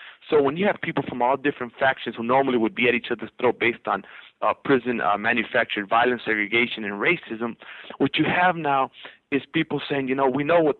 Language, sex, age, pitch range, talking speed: English, male, 30-49, 120-140 Hz, 215 wpm